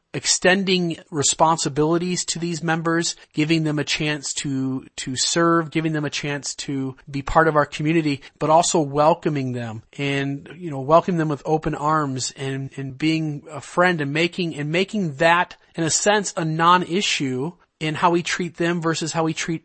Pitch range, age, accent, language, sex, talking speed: 145-165 Hz, 30-49, American, English, male, 175 wpm